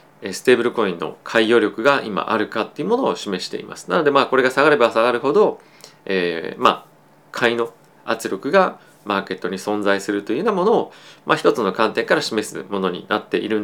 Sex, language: male, Japanese